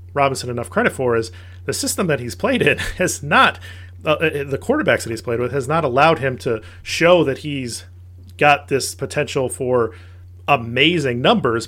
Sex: male